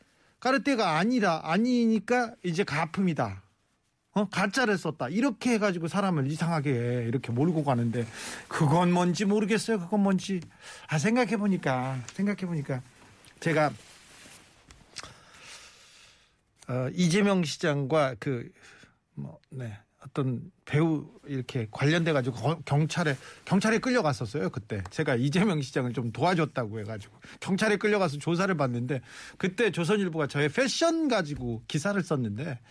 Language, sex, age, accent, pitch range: Korean, male, 40-59, native, 135-195 Hz